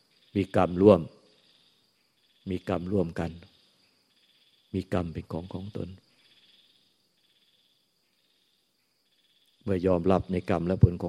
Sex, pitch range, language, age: male, 90-100 Hz, Thai, 50-69